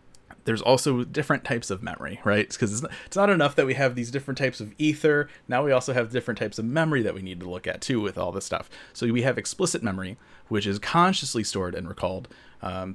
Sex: male